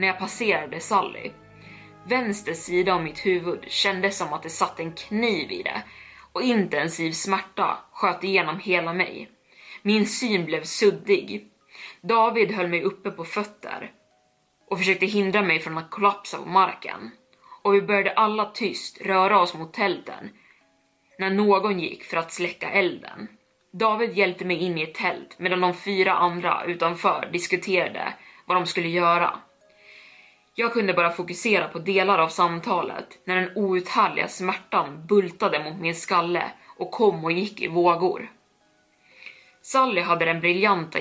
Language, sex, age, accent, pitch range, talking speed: Swedish, female, 20-39, native, 170-200 Hz, 150 wpm